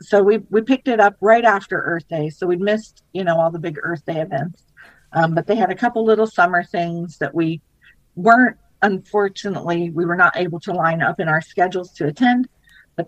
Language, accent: English, American